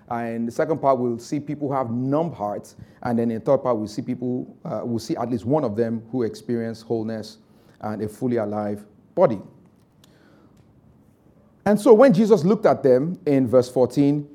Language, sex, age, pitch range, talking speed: English, male, 30-49, 120-160 Hz, 190 wpm